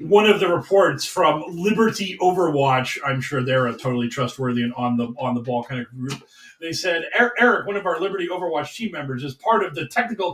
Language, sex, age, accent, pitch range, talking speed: English, male, 40-59, American, 165-205 Hz, 210 wpm